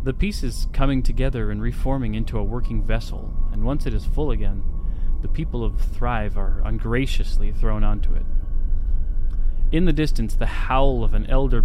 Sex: male